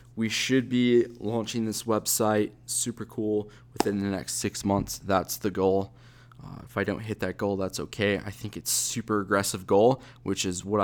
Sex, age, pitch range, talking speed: male, 20-39, 100-120 Hz, 195 wpm